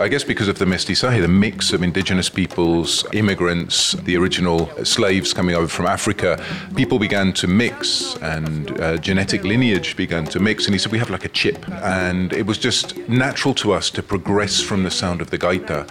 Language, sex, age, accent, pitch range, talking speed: Spanish, male, 40-59, British, 90-115 Hz, 200 wpm